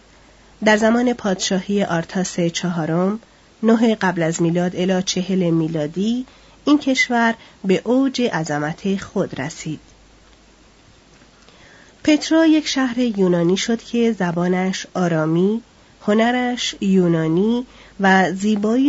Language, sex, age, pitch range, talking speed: Persian, female, 30-49, 175-230 Hz, 100 wpm